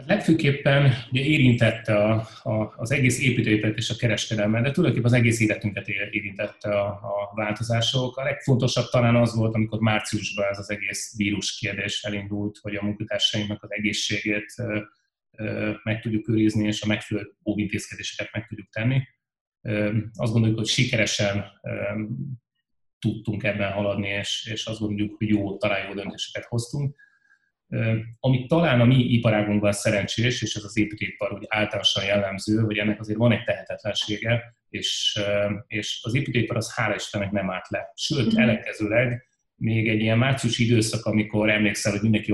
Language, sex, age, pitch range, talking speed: Hungarian, male, 30-49, 105-120 Hz, 150 wpm